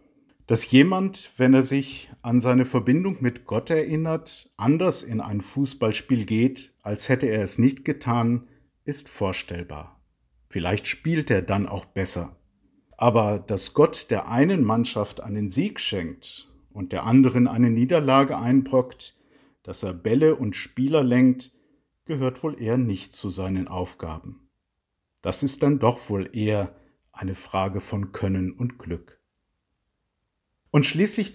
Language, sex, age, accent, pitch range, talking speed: German, male, 50-69, German, 100-135 Hz, 140 wpm